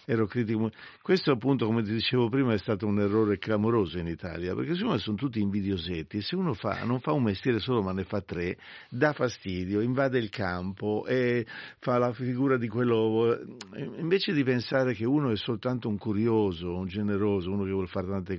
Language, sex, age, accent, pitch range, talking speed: Italian, male, 50-69, native, 100-130 Hz, 195 wpm